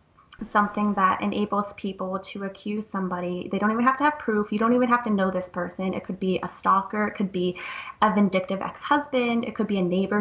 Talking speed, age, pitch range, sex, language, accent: 225 wpm, 20-39, 190-215 Hz, female, English, American